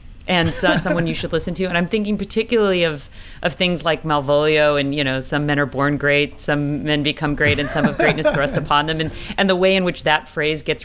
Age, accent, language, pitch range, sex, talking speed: 40-59, American, English, 135-165 Hz, female, 245 wpm